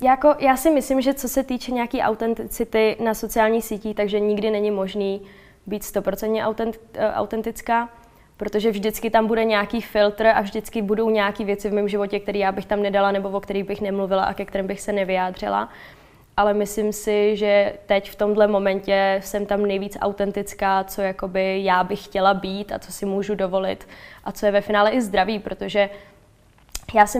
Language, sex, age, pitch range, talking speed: Czech, female, 20-39, 200-220 Hz, 180 wpm